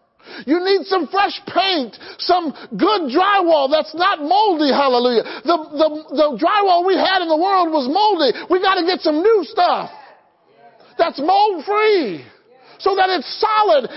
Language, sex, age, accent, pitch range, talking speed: English, male, 40-59, American, 265-380 Hz, 155 wpm